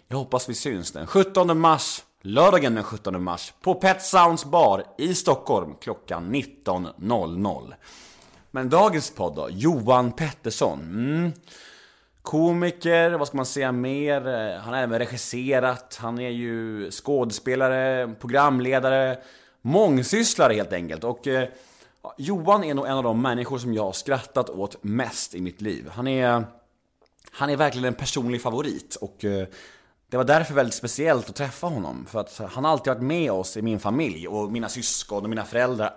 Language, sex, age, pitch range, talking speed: Swedish, male, 30-49, 110-145 Hz, 160 wpm